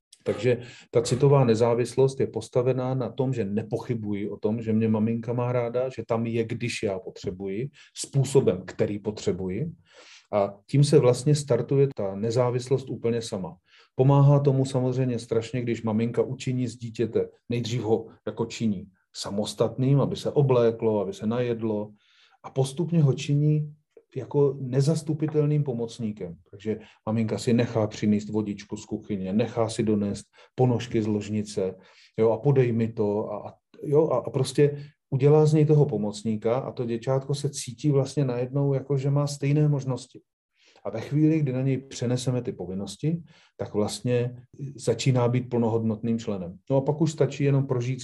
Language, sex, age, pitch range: Slovak, male, 40-59, 110-135 Hz